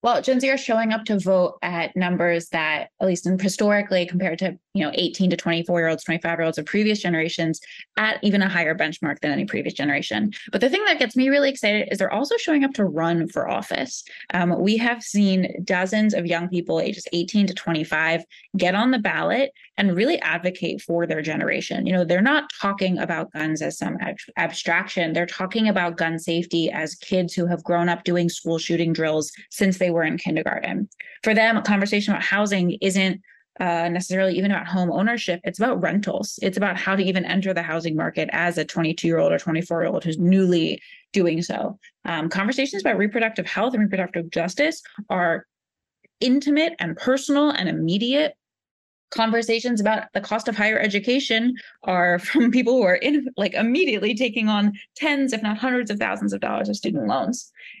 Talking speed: 190 wpm